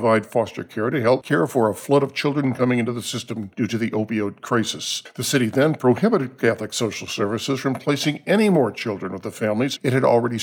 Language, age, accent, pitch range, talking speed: English, 50-69, American, 115-145 Hz, 215 wpm